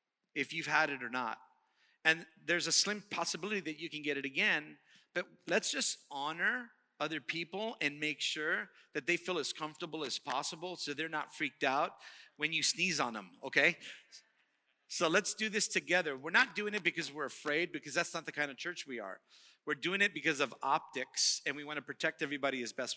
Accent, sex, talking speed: American, male, 205 wpm